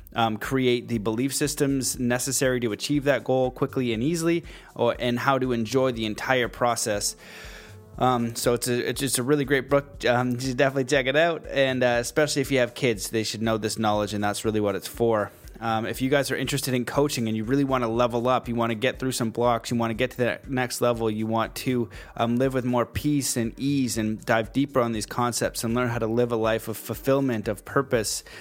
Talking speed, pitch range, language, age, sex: 240 wpm, 110-130 Hz, English, 20-39, male